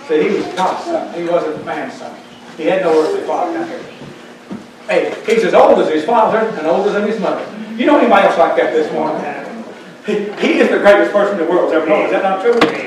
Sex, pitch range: male, 175-295 Hz